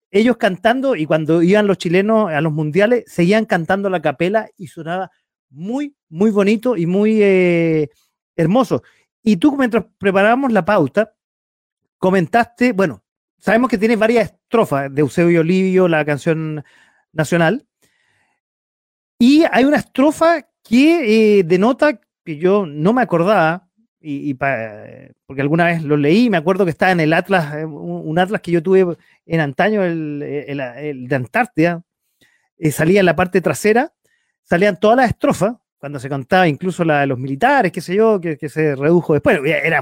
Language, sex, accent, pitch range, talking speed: Spanish, male, Argentinian, 160-230 Hz, 165 wpm